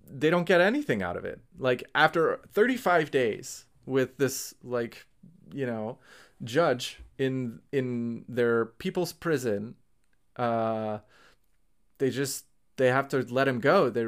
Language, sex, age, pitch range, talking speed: English, male, 30-49, 115-140 Hz, 135 wpm